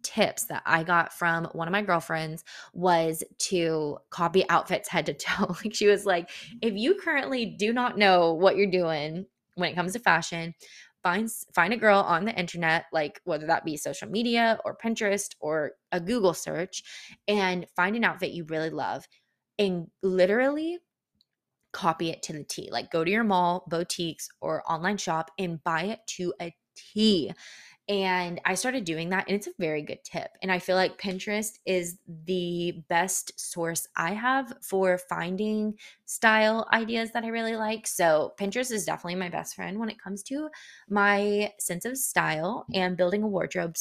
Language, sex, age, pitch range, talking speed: English, female, 20-39, 170-215 Hz, 180 wpm